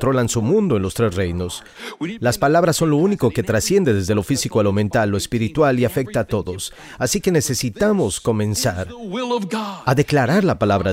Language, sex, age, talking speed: Spanish, male, 40-59, 150 wpm